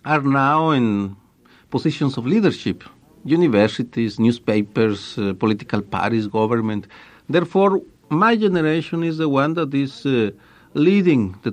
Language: English